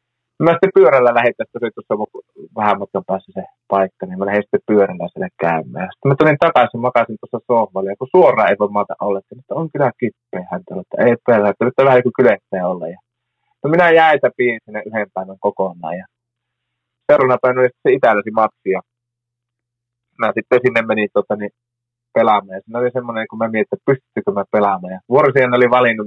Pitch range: 100-125 Hz